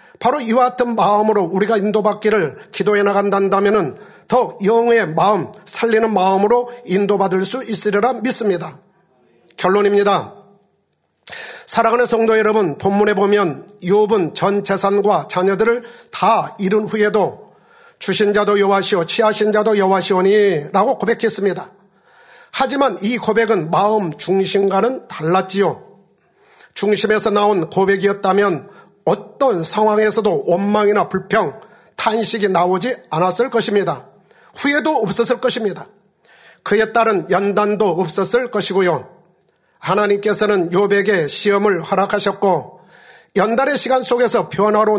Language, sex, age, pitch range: Korean, male, 40-59, 195-225 Hz